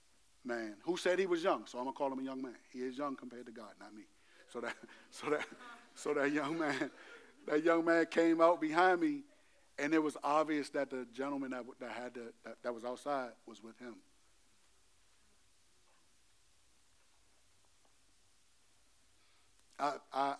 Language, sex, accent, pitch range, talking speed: English, male, American, 125-190 Hz, 165 wpm